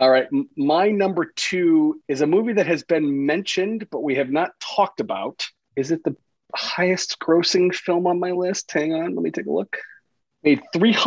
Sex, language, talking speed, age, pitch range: male, English, 190 wpm, 30-49, 125-155 Hz